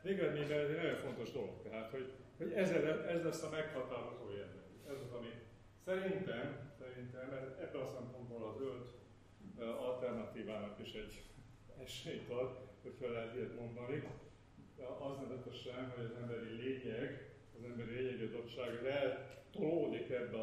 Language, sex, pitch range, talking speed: Hungarian, male, 110-140 Hz, 140 wpm